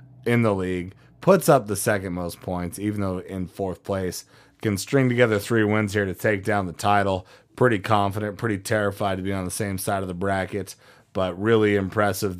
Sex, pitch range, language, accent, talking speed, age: male, 95-120 Hz, English, American, 200 wpm, 30-49